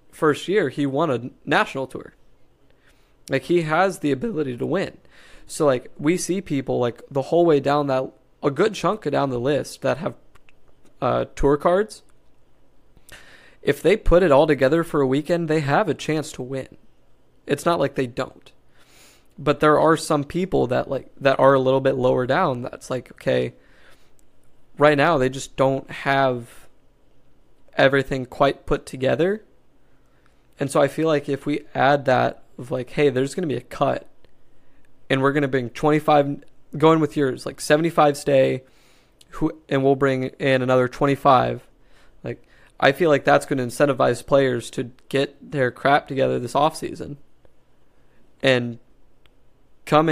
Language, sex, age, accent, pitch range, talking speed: English, male, 20-39, American, 130-150 Hz, 165 wpm